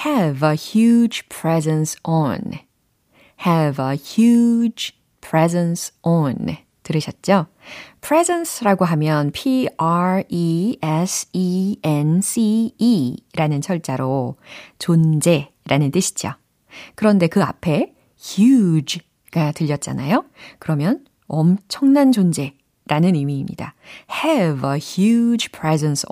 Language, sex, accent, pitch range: Korean, female, native, 155-235 Hz